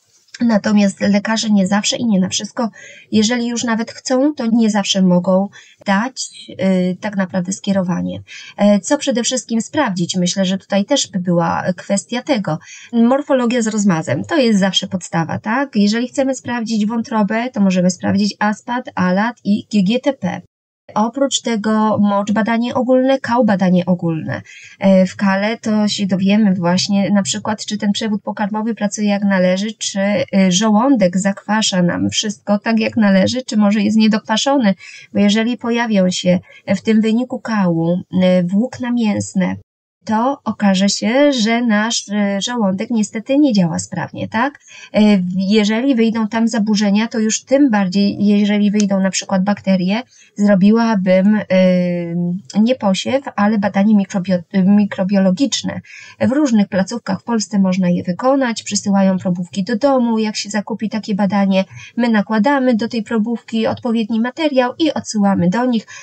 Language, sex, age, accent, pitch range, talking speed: English, female, 20-39, Polish, 195-235 Hz, 140 wpm